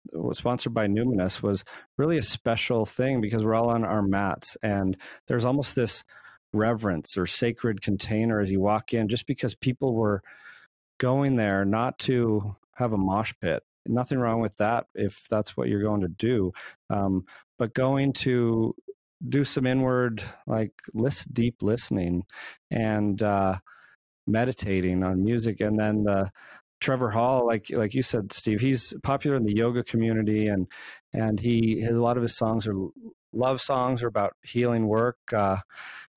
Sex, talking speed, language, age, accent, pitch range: male, 165 wpm, English, 40-59, American, 95-120 Hz